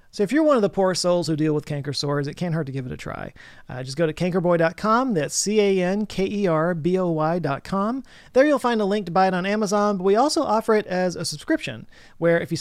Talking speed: 235 wpm